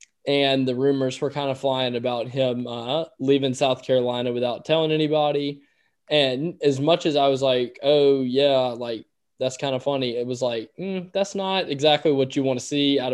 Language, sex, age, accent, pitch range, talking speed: English, male, 10-29, American, 130-150 Hz, 195 wpm